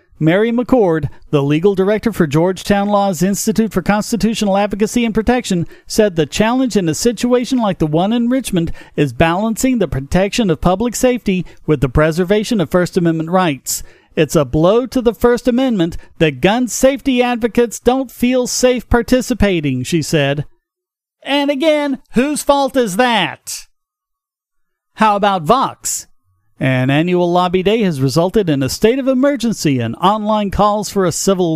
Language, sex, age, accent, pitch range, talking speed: English, male, 40-59, American, 160-230 Hz, 155 wpm